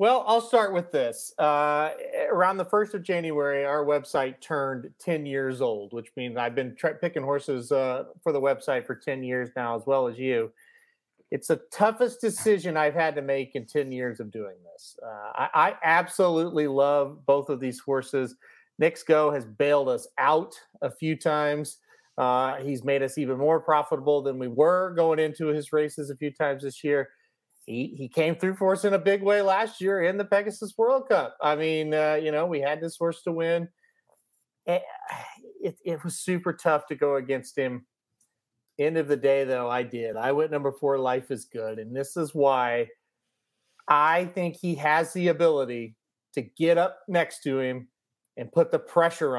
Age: 30-49